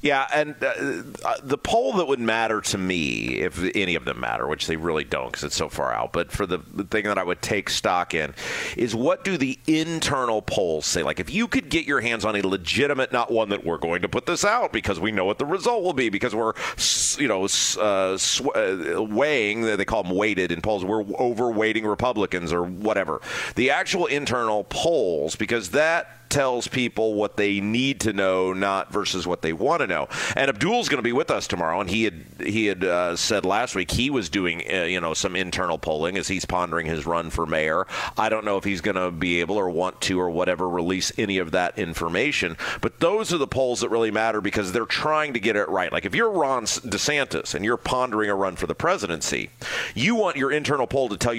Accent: American